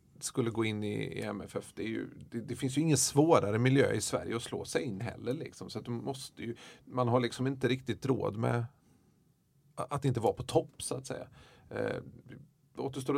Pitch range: 110-135 Hz